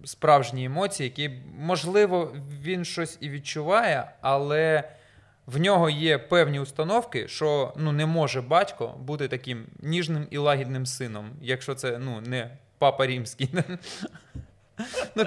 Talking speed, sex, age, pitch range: 125 wpm, male, 20-39, 130-175 Hz